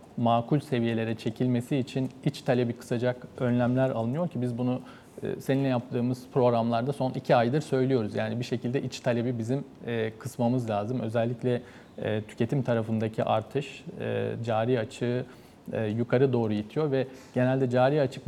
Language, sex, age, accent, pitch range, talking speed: Turkish, male, 40-59, native, 115-135 Hz, 130 wpm